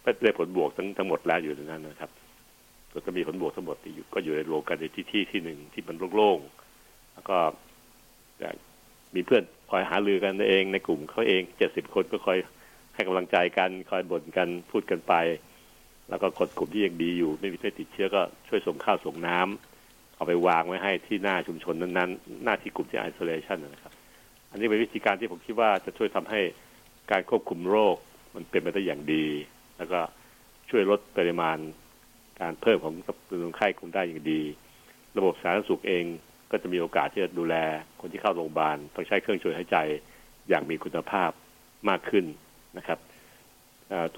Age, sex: 70-89, male